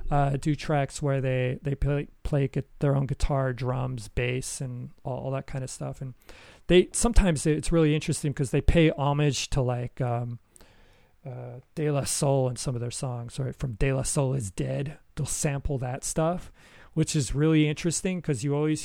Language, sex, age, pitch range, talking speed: English, male, 40-59, 125-145 Hz, 200 wpm